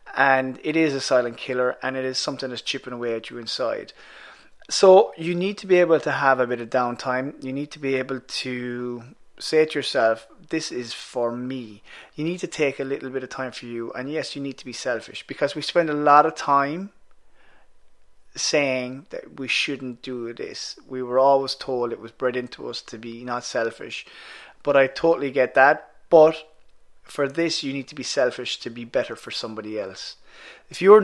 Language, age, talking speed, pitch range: English, 20-39, 205 wpm, 130-165 Hz